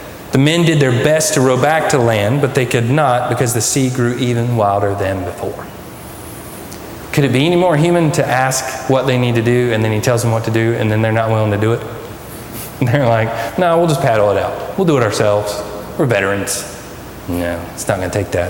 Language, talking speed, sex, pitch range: English, 235 wpm, male, 110-140 Hz